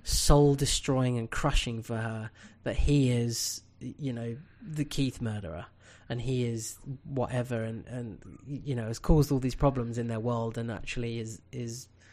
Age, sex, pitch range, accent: 20-39, male, 110-140 Hz, British